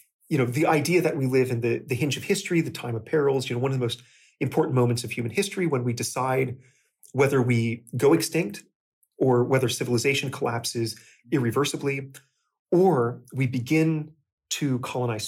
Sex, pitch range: male, 125-160 Hz